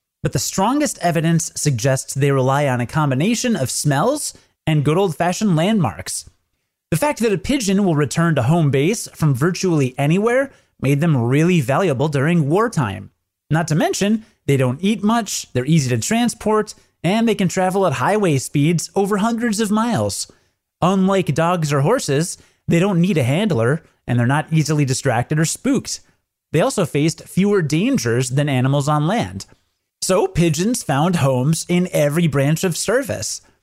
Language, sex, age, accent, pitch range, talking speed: English, male, 30-49, American, 140-190 Hz, 160 wpm